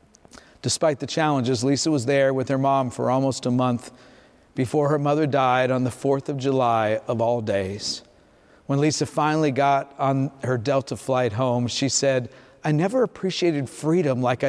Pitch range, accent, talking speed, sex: 130-160 Hz, American, 170 wpm, male